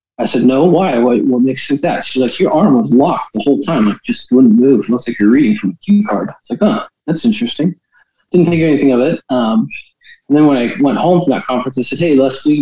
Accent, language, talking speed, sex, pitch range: American, English, 270 wpm, male, 125-190 Hz